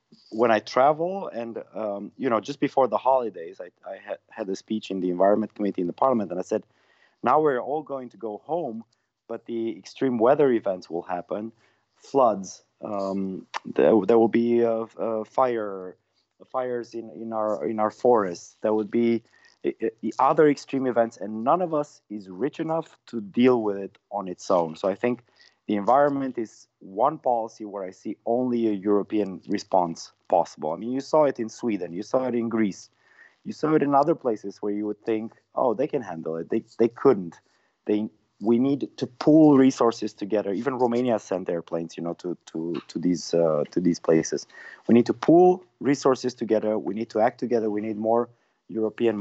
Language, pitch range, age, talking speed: English, 105-125 Hz, 30-49, 195 wpm